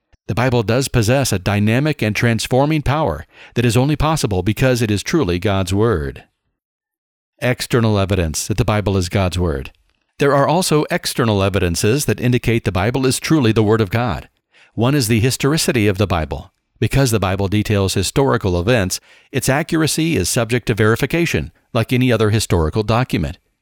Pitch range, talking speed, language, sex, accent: 105-130 Hz, 170 wpm, English, male, American